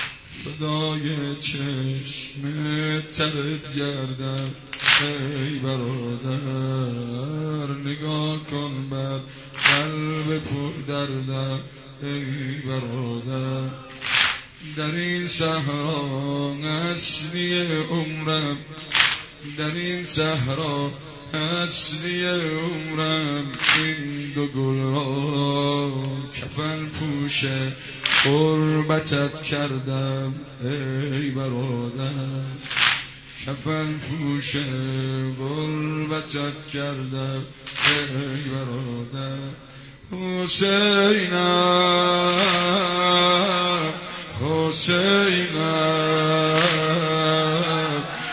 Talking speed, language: 50 wpm, Persian